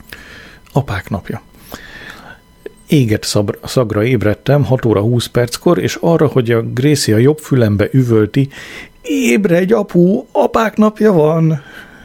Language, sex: Hungarian, male